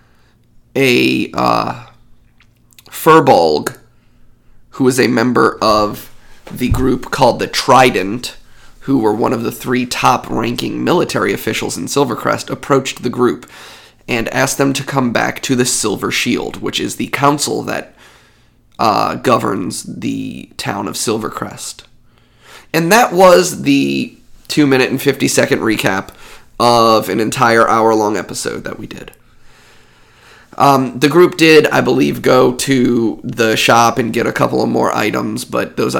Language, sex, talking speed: English, male, 145 wpm